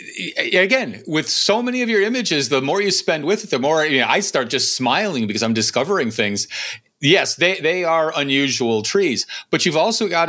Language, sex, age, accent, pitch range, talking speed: English, male, 40-59, American, 115-170 Hz, 205 wpm